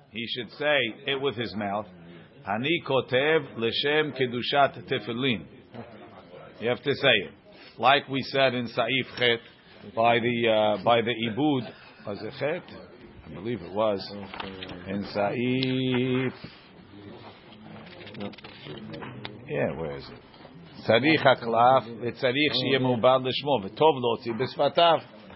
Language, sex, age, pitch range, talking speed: English, male, 50-69, 115-145 Hz, 125 wpm